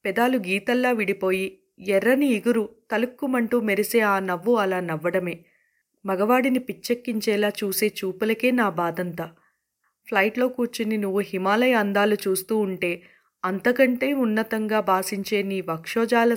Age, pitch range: 30-49, 190-250 Hz